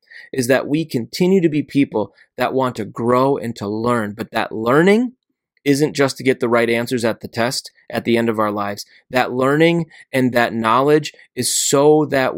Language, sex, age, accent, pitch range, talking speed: English, male, 20-39, American, 110-135 Hz, 200 wpm